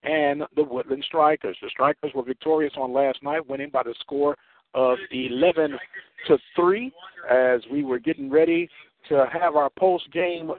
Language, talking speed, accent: English, 155 wpm, American